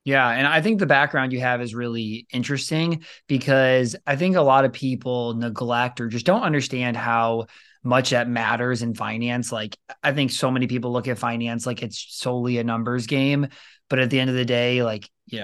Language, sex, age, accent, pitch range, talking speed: English, male, 20-39, American, 120-135 Hz, 205 wpm